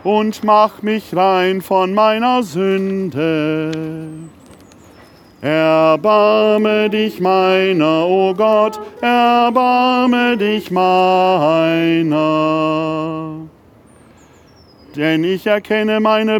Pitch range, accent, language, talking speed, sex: 160-220 Hz, German, German, 75 wpm, male